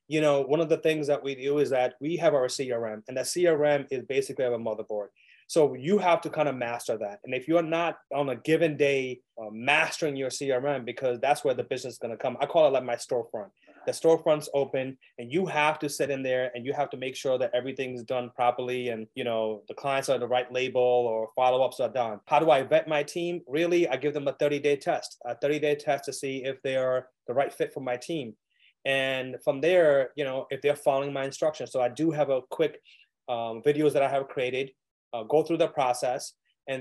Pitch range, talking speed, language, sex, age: 125-150 Hz, 235 wpm, English, male, 30-49